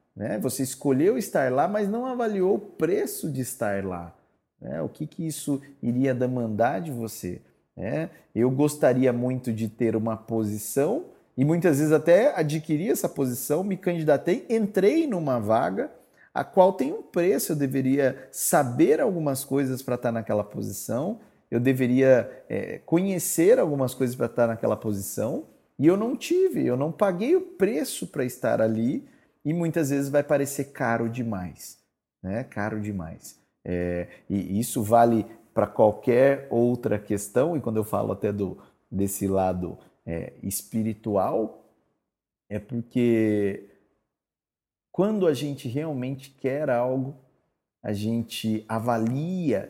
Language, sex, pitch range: Portuguese, male, 110-145 Hz